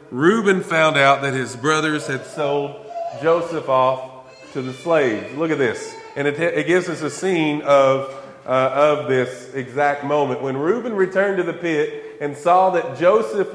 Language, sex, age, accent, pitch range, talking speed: English, male, 30-49, American, 130-180 Hz, 175 wpm